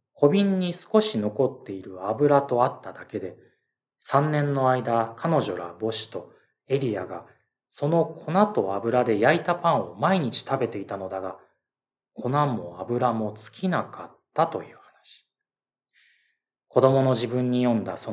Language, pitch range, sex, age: Japanese, 110-145 Hz, male, 20-39